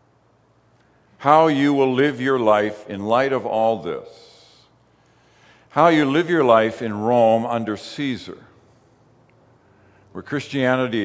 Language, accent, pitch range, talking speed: English, American, 105-130 Hz, 120 wpm